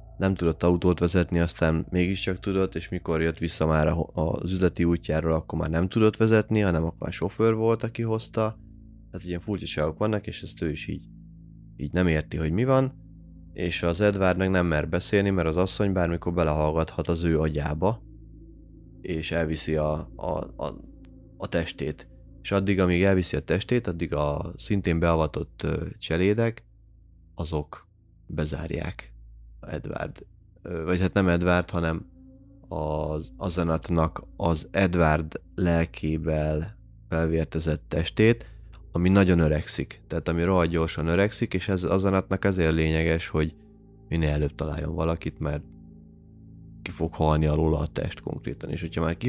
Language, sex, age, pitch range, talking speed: Hungarian, male, 20-39, 80-95 Hz, 145 wpm